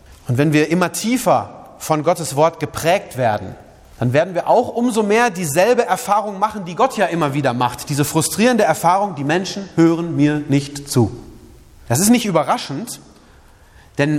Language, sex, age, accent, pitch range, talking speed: German, male, 30-49, German, 120-170 Hz, 165 wpm